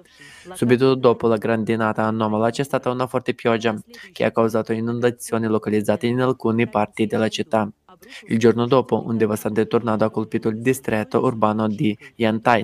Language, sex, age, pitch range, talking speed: Italian, male, 20-39, 110-125 Hz, 155 wpm